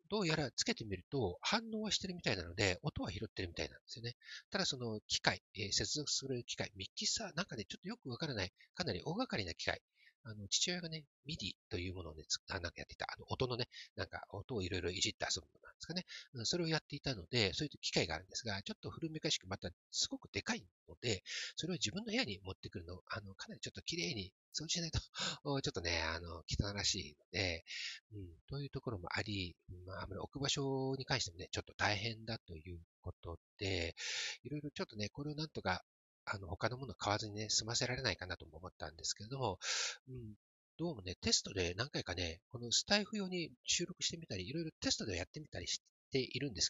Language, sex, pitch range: Japanese, male, 95-150 Hz